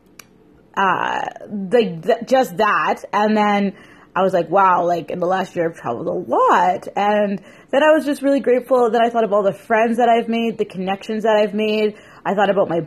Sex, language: female, English